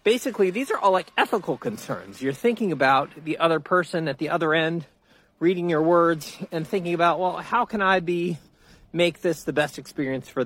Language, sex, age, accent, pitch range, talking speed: English, male, 40-59, American, 155-195 Hz, 195 wpm